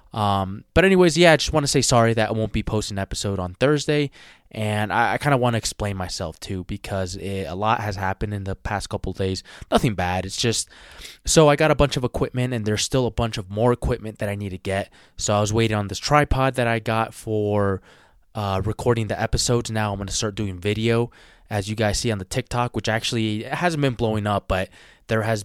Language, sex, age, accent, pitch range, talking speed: English, male, 20-39, American, 100-120 Hz, 245 wpm